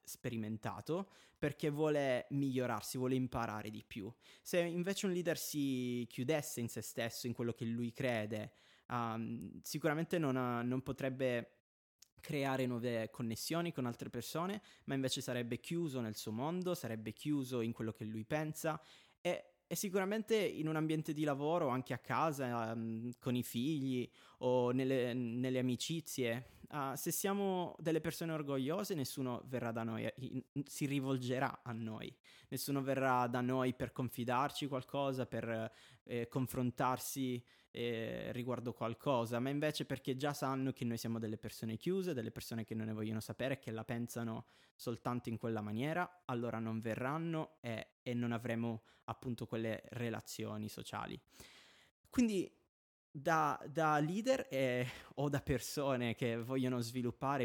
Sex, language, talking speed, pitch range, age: male, Italian, 145 wpm, 115-150 Hz, 20-39